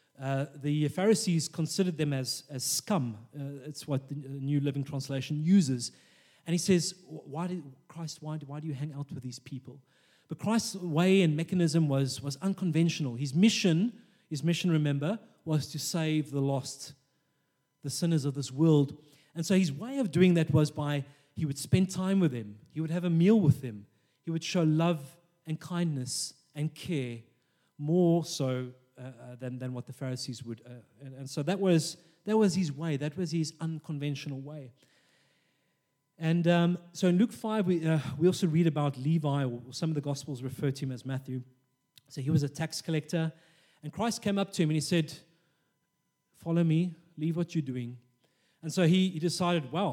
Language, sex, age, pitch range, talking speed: English, male, 30-49, 140-170 Hz, 190 wpm